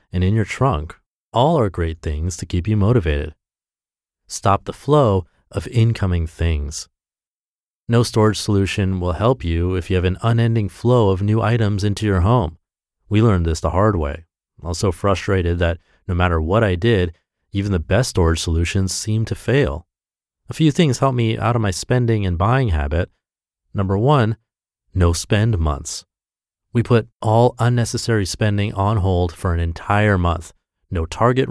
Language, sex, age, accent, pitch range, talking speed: English, male, 30-49, American, 85-115 Hz, 170 wpm